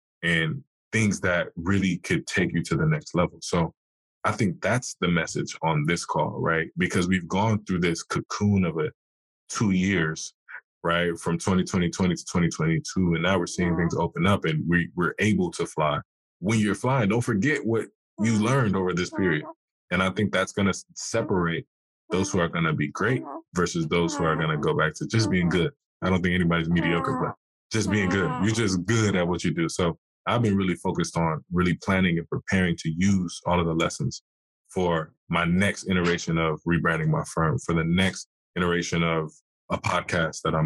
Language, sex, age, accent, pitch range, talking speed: English, male, 20-39, American, 85-100 Hz, 200 wpm